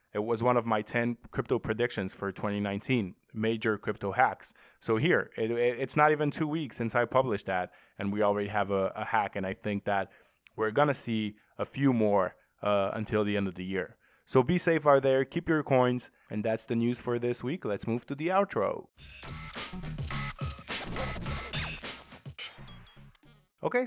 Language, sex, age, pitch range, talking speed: English, male, 20-39, 110-145 Hz, 175 wpm